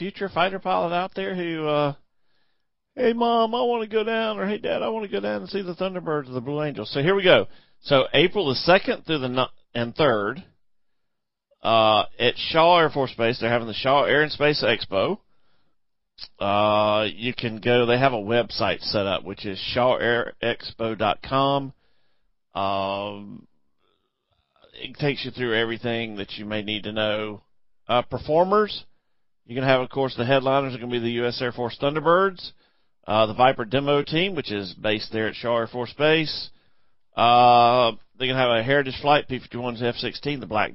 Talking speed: 190 wpm